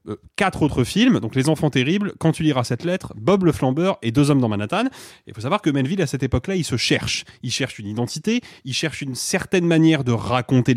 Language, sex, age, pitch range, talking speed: French, male, 30-49, 120-160 Hz, 235 wpm